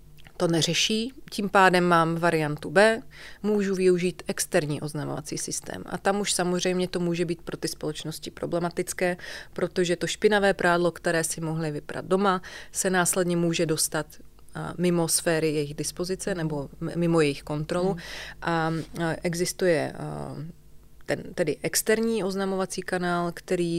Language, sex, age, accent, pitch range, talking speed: Czech, female, 30-49, native, 150-180 Hz, 130 wpm